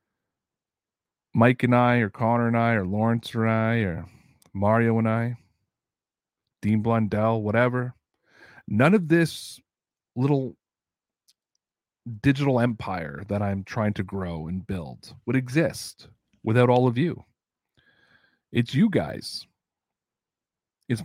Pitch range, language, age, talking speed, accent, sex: 105-130 Hz, English, 40-59, 115 wpm, American, male